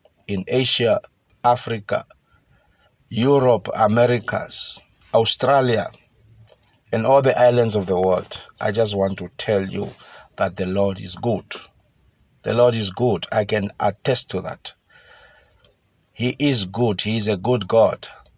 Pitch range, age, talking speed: 100-125 Hz, 50-69, 135 wpm